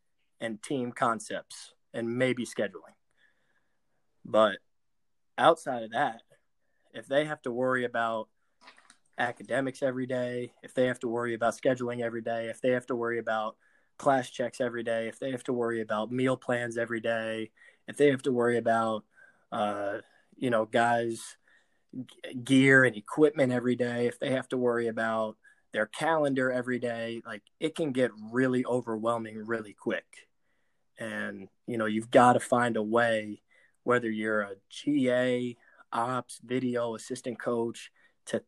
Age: 20-39